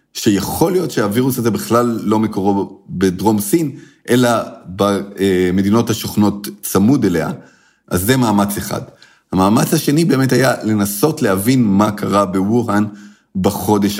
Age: 30-49